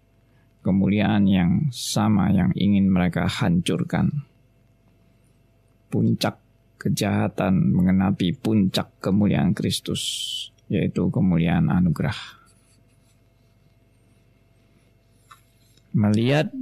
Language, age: Indonesian, 20-39